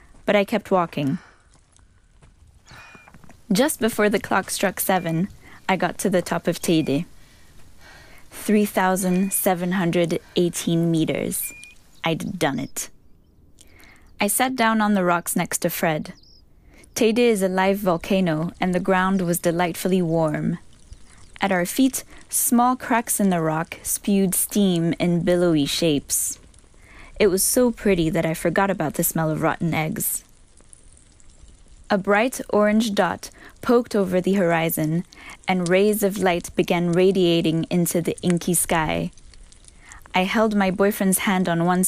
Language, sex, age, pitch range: English, female, 10-29, 135-195 Hz